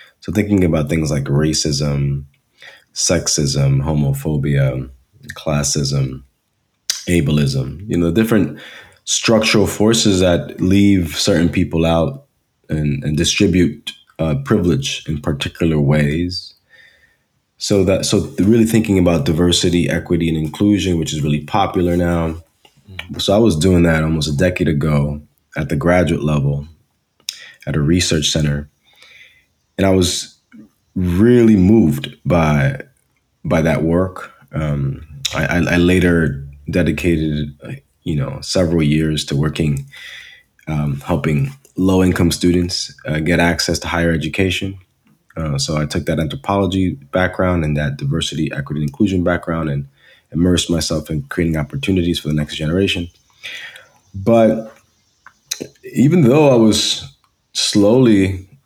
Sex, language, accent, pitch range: male, English, American, 75-95 Hz